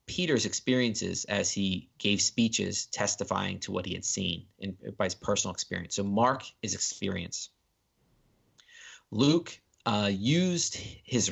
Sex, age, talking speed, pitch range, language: male, 30-49, 135 wpm, 95-115 Hz, English